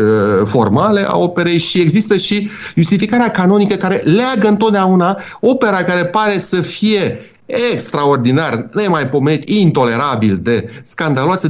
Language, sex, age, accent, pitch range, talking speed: Romanian, male, 30-49, native, 125-200 Hz, 110 wpm